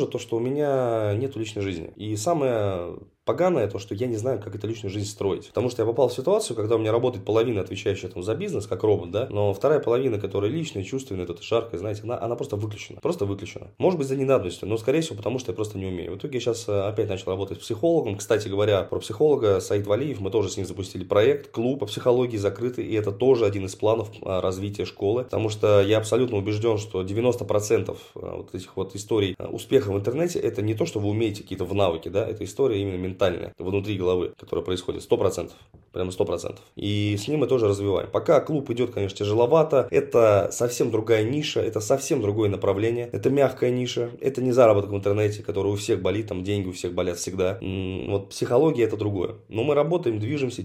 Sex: male